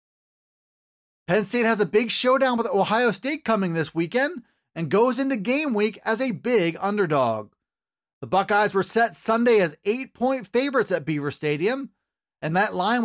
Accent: American